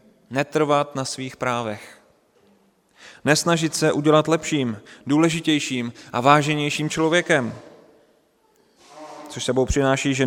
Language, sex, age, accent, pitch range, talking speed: Czech, male, 30-49, native, 130-160 Hz, 95 wpm